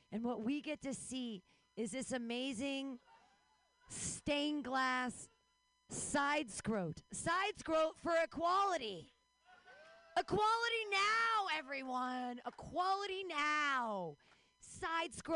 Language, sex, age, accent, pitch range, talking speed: English, female, 30-49, American, 210-300 Hz, 90 wpm